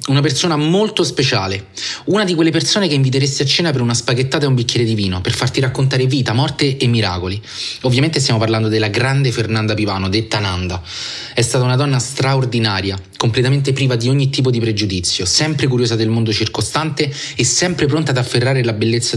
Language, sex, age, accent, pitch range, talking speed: Italian, male, 30-49, native, 110-135 Hz, 190 wpm